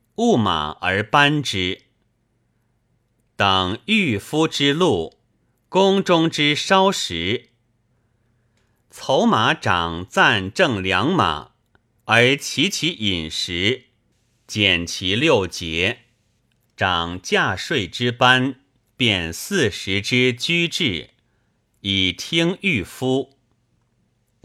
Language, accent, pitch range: Chinese, native, 100-135 Hz